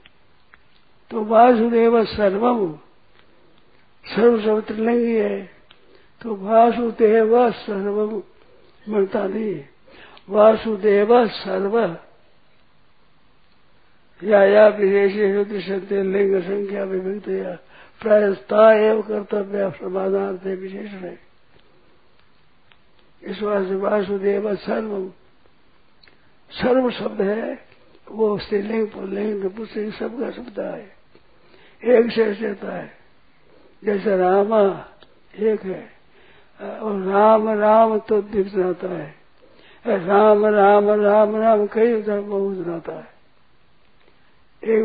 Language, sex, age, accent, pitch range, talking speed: Hindi, male, 60-79, native, 195-220 Hz, 85 wpm